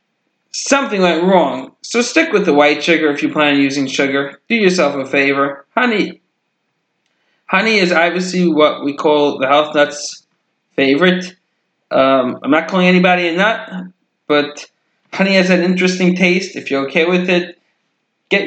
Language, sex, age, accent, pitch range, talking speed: English, male, 20-39, American, 150-190 Hz, 160 wpm